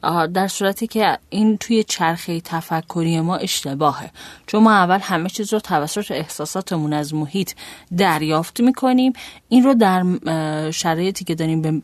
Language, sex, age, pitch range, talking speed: Persian, female, 30-49, 160-210 Hz, 145 wpm